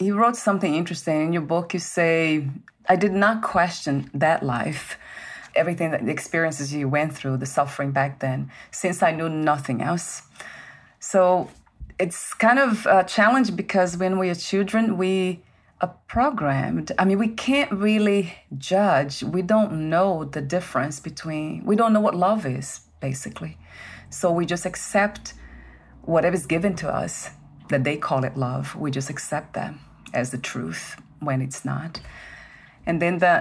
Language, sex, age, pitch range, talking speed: English, female, 30-49, 145-190 Hz, 165 wpm